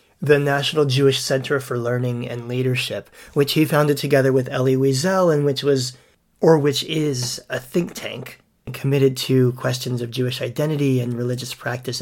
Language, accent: English, American